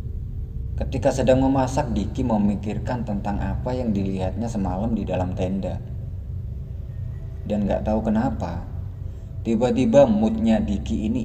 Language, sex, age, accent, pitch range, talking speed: Indonesian, male, 20-39, native, 95-115 Hz, 110 wpm